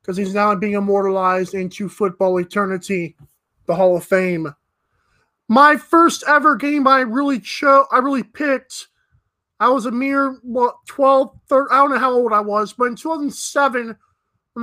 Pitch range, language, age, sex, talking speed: 215-290 Hz, English, 20-39, male, 160 wpm